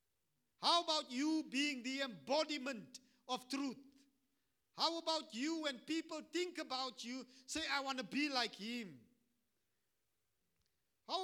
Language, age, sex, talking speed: English, 50-69, male, 130 wpm